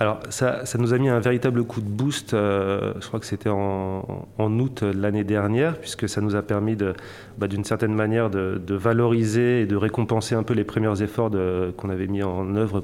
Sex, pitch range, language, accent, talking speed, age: male, 100-115 Hz, French, French, 230 wpm, 30-49